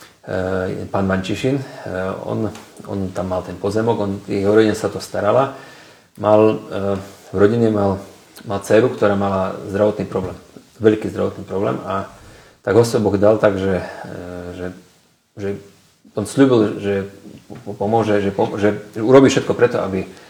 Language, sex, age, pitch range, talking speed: Slovak, male, 40-59, 100-110 Hz, 125 wpm